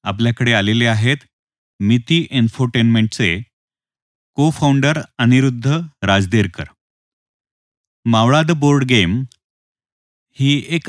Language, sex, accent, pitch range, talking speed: Marathi, male, native, 115-140 Hz, 85 wpm